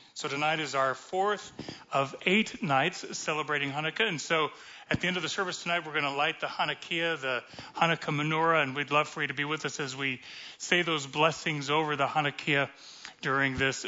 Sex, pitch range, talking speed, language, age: male, 140-170 Hz, 205 wpm, English, 40-59